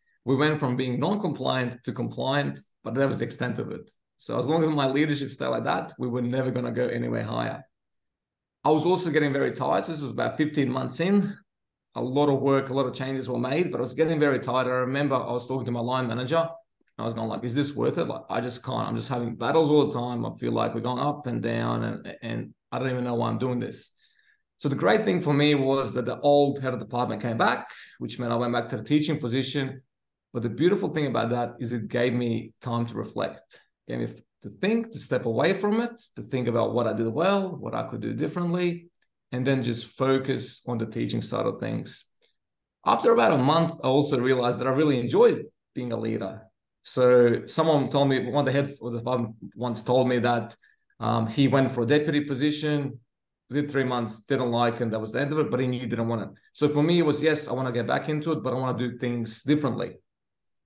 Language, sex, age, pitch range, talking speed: English, male, 20-39, 120-145 Hz, 245 wpm